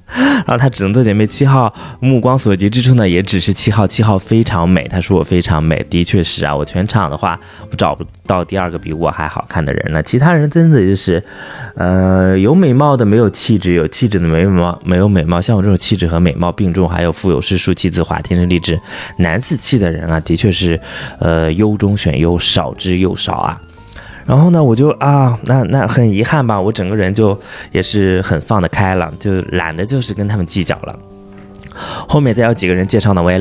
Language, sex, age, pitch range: Chinese, male, 20-39, 85-105 Hz